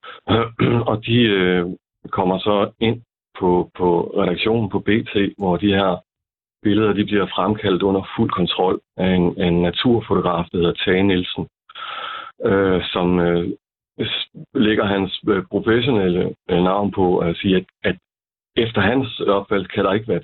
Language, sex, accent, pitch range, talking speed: Danish, male, native, 90-110 Hz, 145 wpm